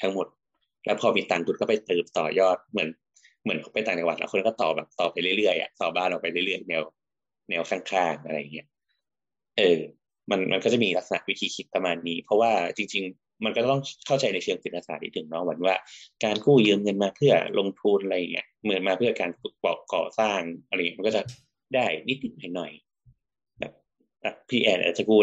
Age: 20-39